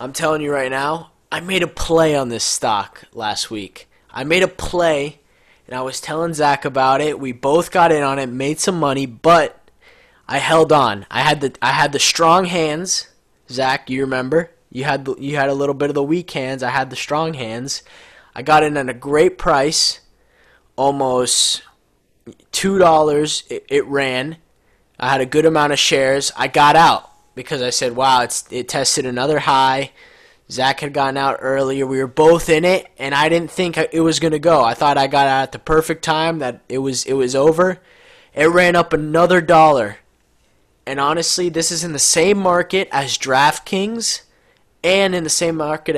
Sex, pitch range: male, 135-165 Hz